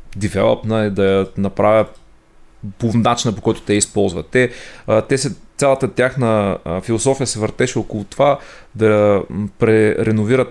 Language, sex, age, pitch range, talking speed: Bulgarian, male, 30-49, 105-130 Hz, 115 wpm